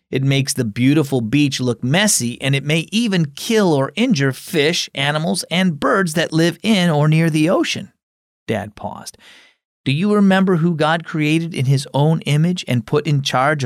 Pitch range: 130-175 Hz